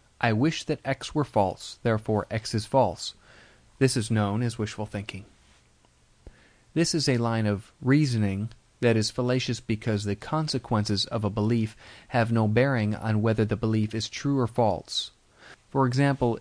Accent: American